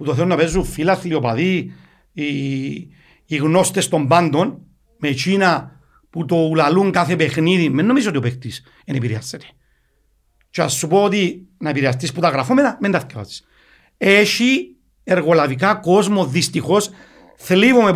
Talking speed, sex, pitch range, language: 150 wpm, male, 130-190 Hz, Greek